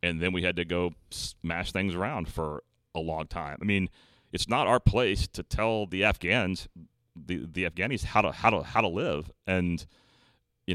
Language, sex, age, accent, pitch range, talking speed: English, male, 30-49, American, 80-95 Hz, 195 wpm